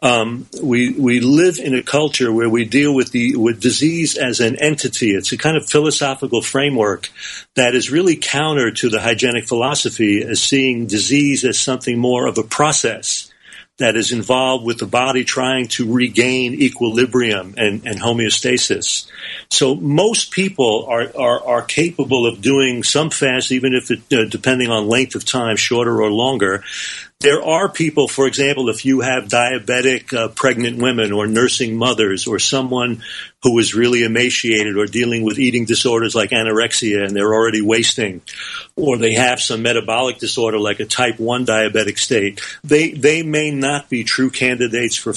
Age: 40-59